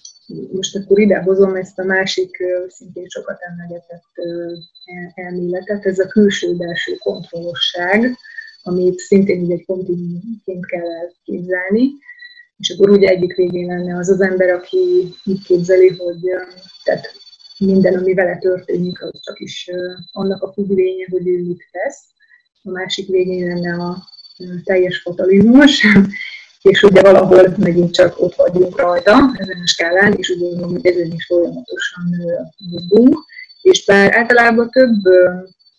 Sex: female